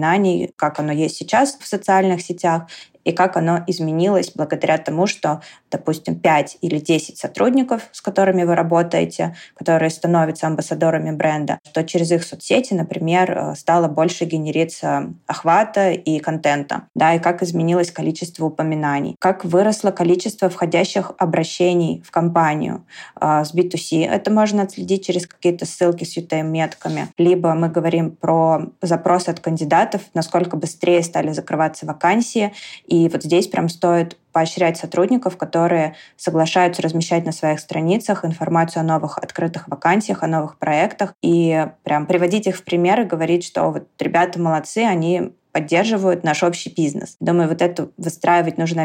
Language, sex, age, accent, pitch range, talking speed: Russian, female, 20-39, native, 160-180 Hz, 140 wpm